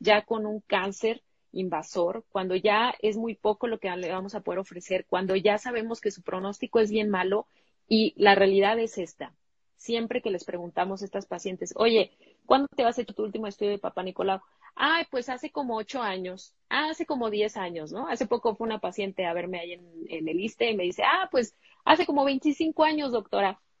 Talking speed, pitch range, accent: 210 wpm, 190-240 Hz, Mexican